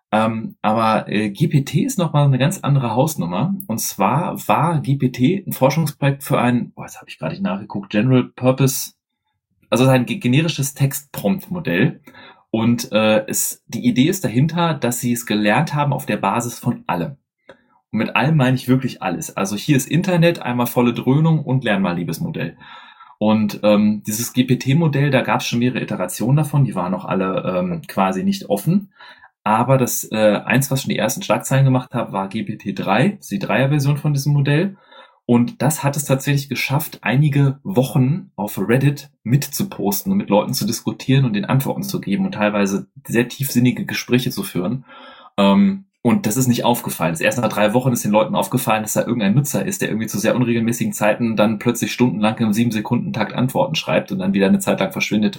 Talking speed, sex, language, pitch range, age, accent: 185 wpm, male, German, 110-145 Hz, 30-49, German